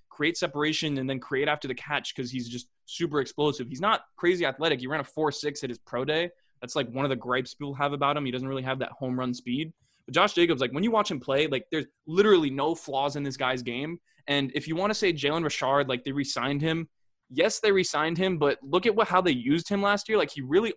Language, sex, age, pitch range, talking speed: English, male, 20-39, 130-165 Hz, 265 wpm